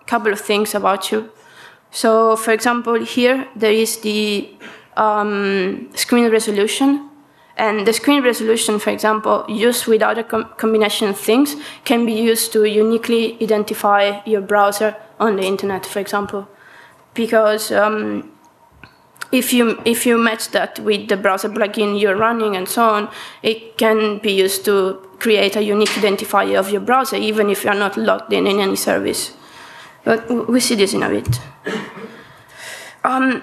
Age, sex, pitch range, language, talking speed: 20-39, female, 210-235 Hz, English, 155 wpm